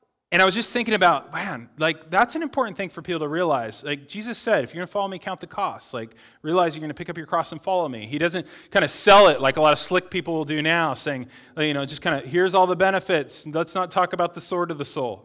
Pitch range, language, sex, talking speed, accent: 130-180 Hz, English, male, 290 wpm, American